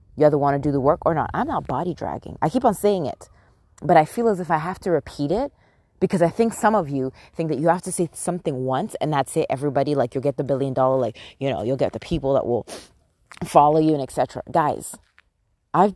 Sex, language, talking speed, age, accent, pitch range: female, English, 250 wpm, 20-39, American, 130-175 Hz